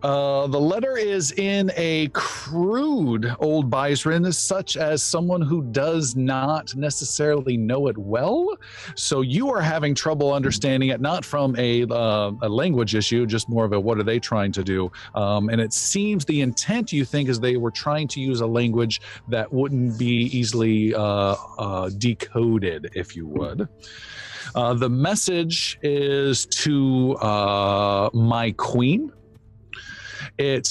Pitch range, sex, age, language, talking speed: 110-140 Hz, male, 40-59, English, 150 wpm